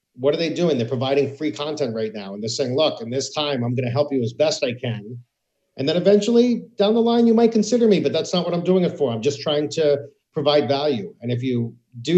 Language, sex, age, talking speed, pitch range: English, male, 50-69, 265 wpm, 125-155 Hz